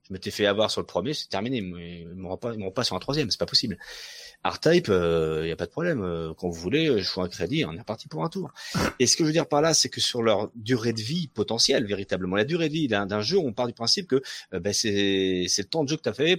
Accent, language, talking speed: French, French, 305 wpm